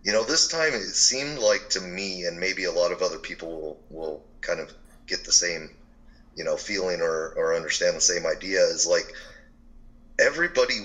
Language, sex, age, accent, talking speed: English, male, 30-49, American, 195 wpm